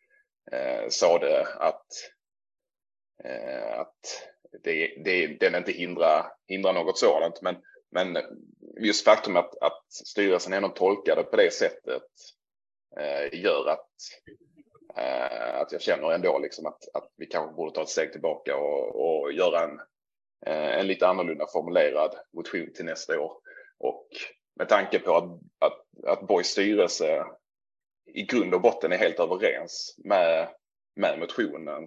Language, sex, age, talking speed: Swedish, male, 30-49, 135 wpm